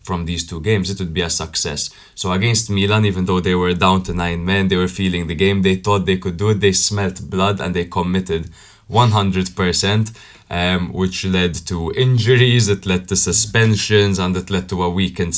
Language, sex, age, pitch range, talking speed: English, male, 20-39, 90-105 Hz, 210 wpm